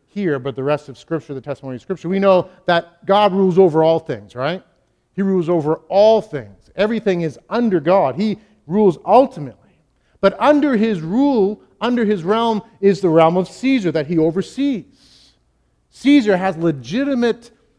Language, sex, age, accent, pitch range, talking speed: English, male, 50-69, American, 150-200 Hz, 165 wpm